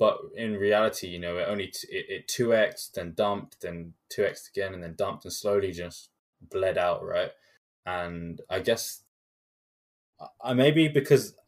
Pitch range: 90-140 Hz